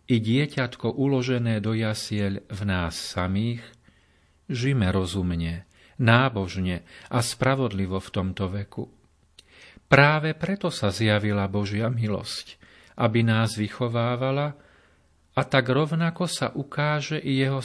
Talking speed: 110 wpm